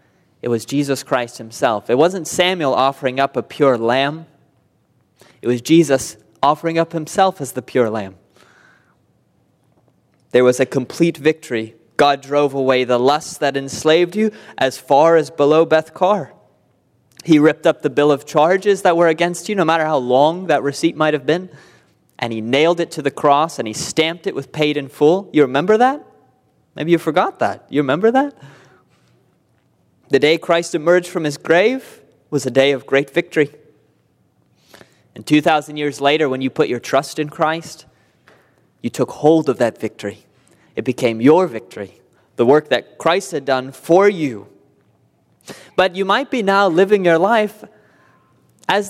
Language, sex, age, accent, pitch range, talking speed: English, male, 20-39, American, 135-175 Hz, 170 wpm